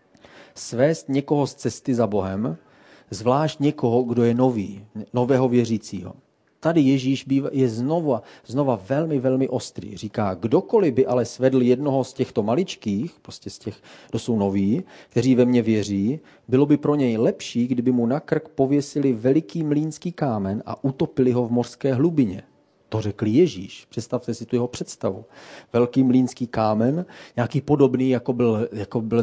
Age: 40-59